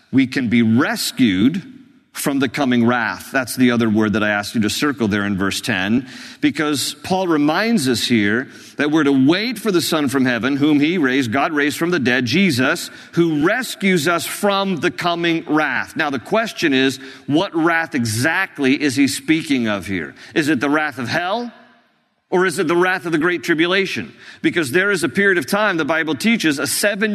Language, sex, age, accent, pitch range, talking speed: English, male, 50-69, American, 140-205 Hz, 200 wpm